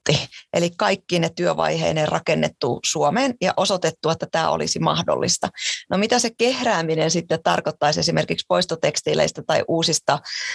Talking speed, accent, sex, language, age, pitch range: 125 wpm, native, female, Finnish, 30-49, 165-210 Hz